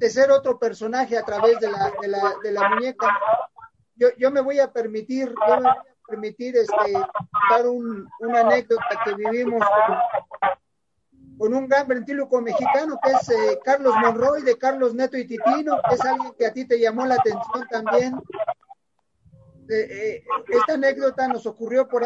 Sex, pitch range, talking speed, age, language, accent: male, 230-280 Hz, 175 wpm, 40-59, English, Mexican